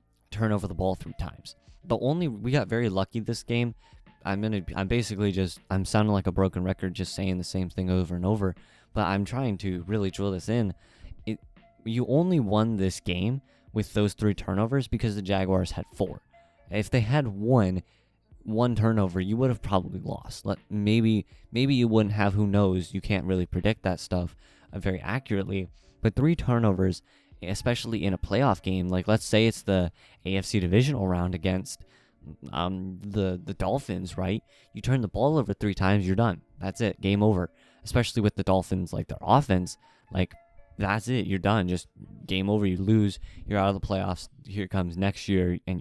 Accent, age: American, 20-39